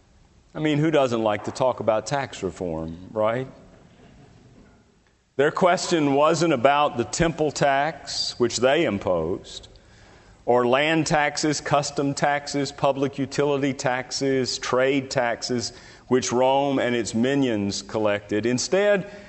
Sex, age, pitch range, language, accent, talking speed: male, 50-69, 110-150 Hz, English, American, 120 wpm